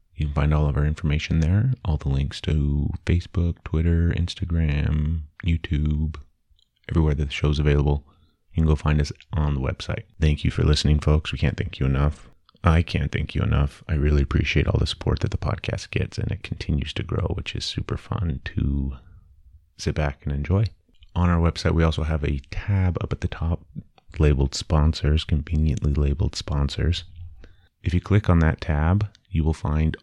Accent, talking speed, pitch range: American, 190 wpm, 75-90 Hz